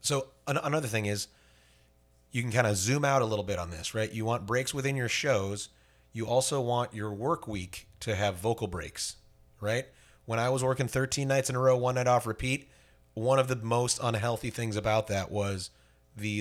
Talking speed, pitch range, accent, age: 205 wpm, 85-115 Hz, American, 30-49